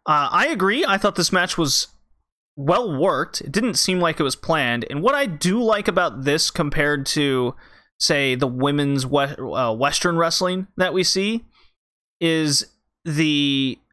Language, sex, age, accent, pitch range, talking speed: English, male, 30-49, American, 140-175 Hz, 155 wpm